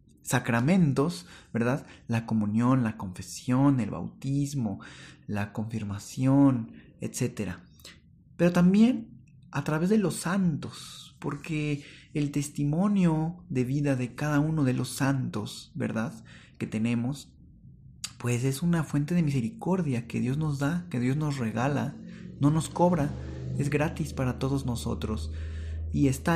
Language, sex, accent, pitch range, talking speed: Spanish, male, Mexican, 120-155 Hz, 125 wpm